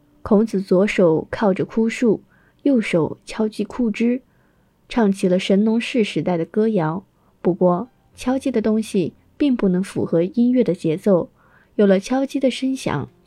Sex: female